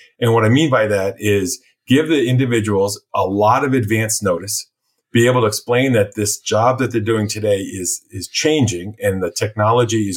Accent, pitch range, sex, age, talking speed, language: American, 105-130 Hz, male, 30-49, 195 wpm, English